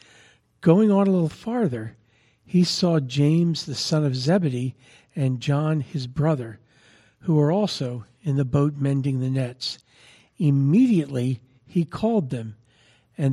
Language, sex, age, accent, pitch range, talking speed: English, male, 50-69, American, 125-160 Hz, 135 wpm